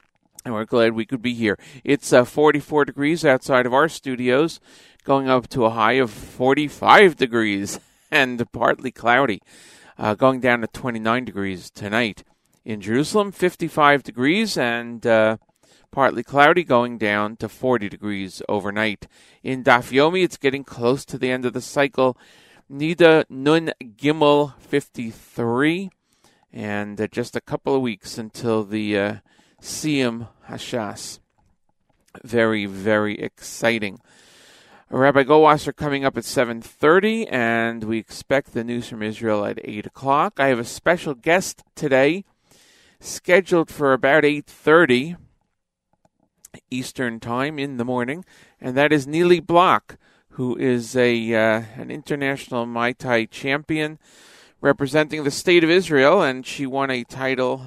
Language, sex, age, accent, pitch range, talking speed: English, male, 40-59, American, 115-145 Hz, 135 wpm